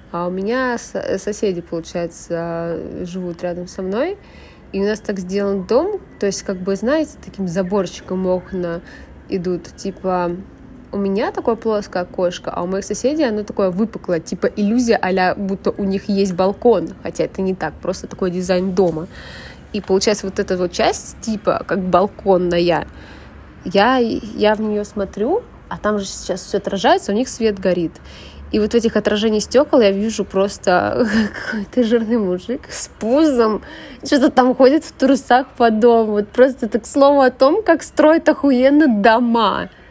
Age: 20-39